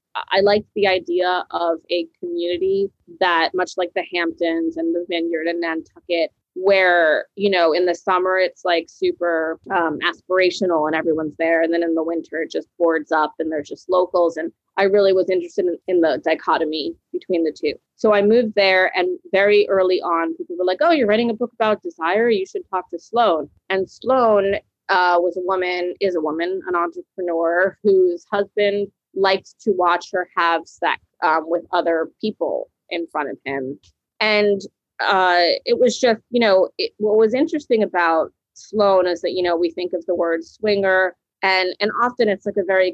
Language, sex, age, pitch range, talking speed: English, female, 20-39, 170-205 Hz, 190 wpm